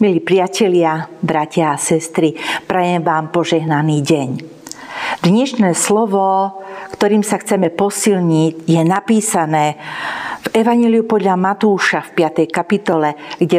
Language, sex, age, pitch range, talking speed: Slovak, female, 50-69, 160-205 Hz, 110 wpm